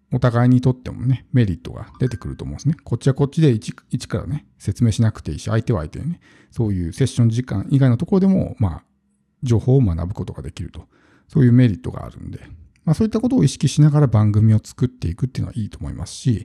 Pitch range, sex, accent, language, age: 110-150 Hz, male, native, Japanese, 50-69